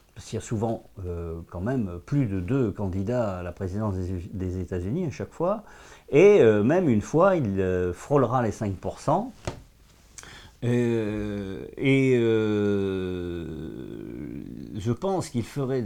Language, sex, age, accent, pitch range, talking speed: French, male, 50-69, French, 100-130 Hz, 145 wpm